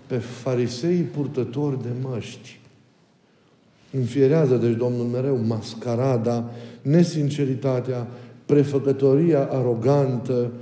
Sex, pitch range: male, 115-140 Hz